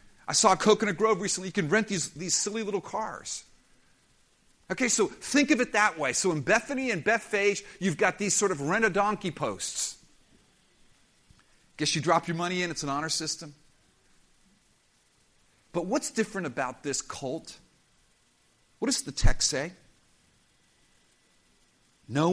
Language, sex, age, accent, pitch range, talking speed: English, male, 50-69, American, 145-210 Hz, 145 wpm